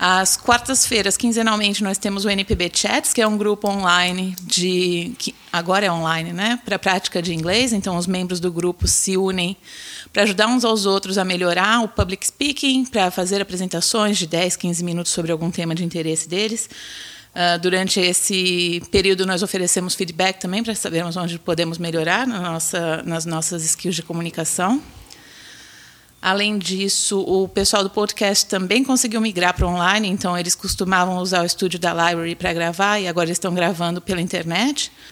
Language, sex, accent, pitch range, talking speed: Portuguese, female, Brazilian, 175-210 Hz, 170 wpm